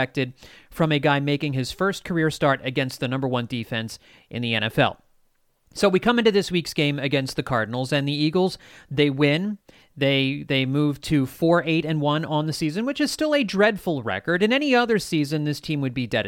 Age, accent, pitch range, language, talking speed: 40-59, American, 125-170 Hz, English, 200 wpm